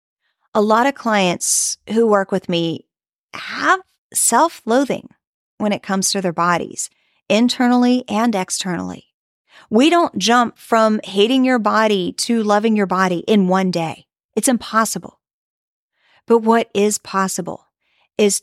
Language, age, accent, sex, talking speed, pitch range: English, 40-59, American, female, 130 wpm, 195-260 Hz